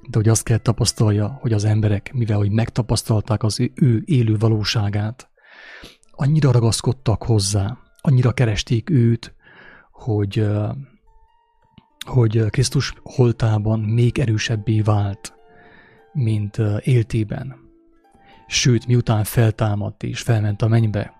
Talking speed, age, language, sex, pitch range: 100 wpm, 30-49, English, male, 110-130 Hz